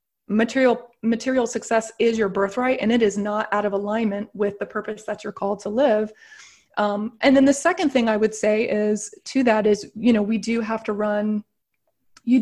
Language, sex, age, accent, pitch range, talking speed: English, female, 20-39, American, 205-245 Hz, 205 wpm